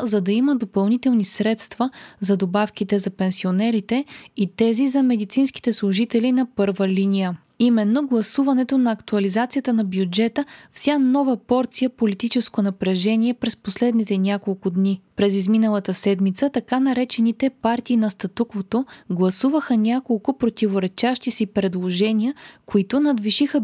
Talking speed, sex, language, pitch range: 120 wpm, female, Bulgarian, 200-255 Hz